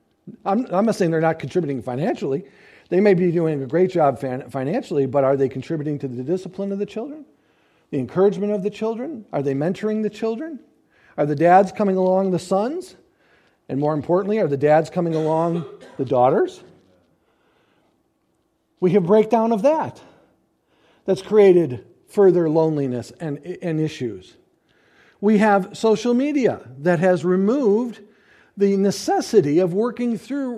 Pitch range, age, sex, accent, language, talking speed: 165-225 Hz, 50-69, male, American, English, 150 wpm